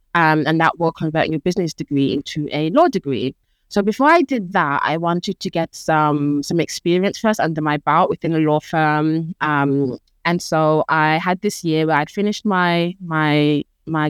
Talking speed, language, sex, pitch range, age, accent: 190 wpm, English, female, 155-210 Hz, 20-39, British